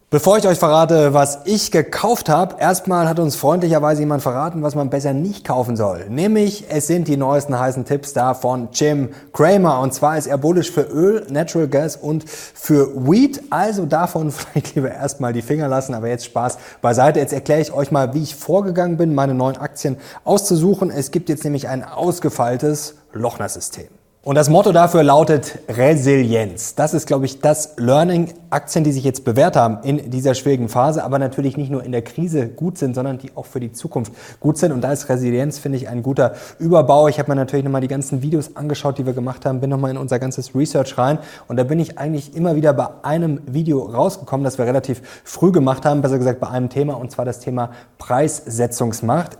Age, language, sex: 30-49, German, male